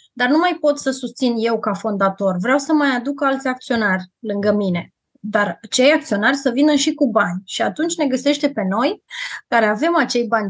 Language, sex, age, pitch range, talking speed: Romanian, female, 20-39, 200-245 Hz, 200 wpm